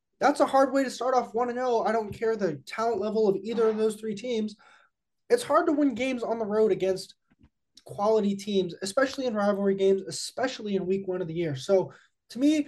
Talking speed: 215 wpm